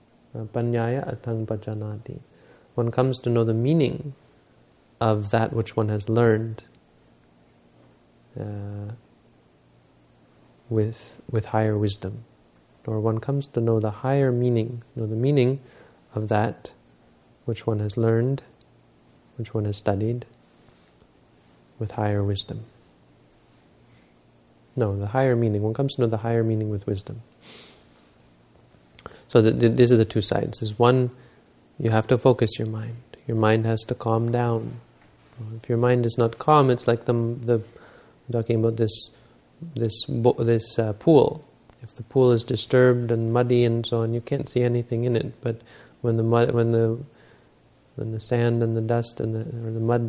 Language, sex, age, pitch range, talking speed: English, male, 30-49, 110-120 Hz, 150 wpm